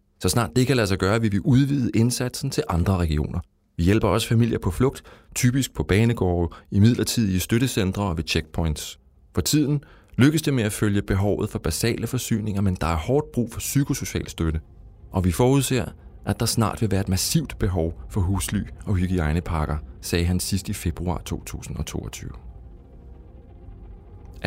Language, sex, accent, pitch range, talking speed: Danish, male, native, 90-115 Hz, 170 wpm